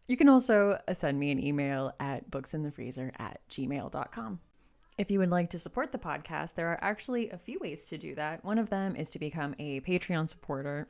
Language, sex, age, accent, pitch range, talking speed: English, female, 20-39, American, 145-185 Hz, 205 wpm